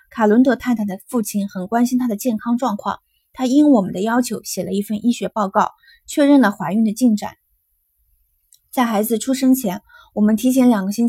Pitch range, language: 205-255 Hz, Chinese